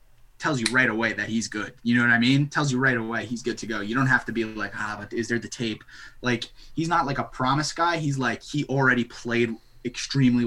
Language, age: English, 20-39